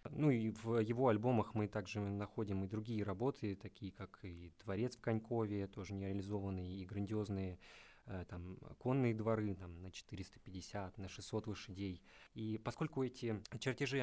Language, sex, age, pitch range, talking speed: Russian, male, 20-39, 105-125 Hz, 145 wpm